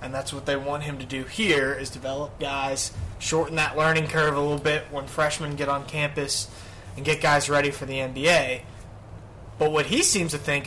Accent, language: American, English